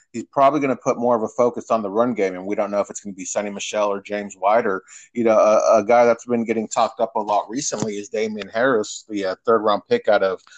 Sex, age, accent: male, 30-49, American